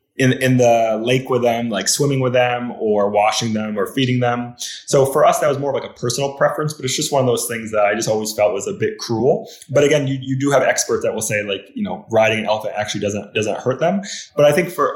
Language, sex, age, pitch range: English, male, 20-39, 105-130 Hz